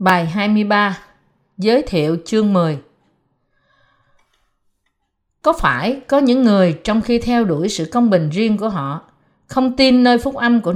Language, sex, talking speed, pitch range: Vietnamese, female, 150 wpm, 160-235 Hz